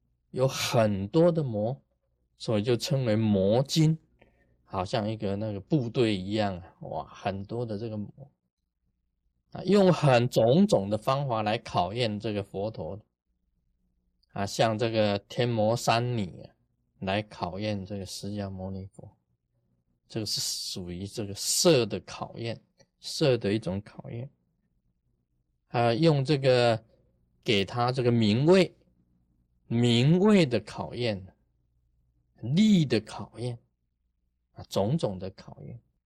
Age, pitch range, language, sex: 20-39, 90-125 Hz, Chinese, male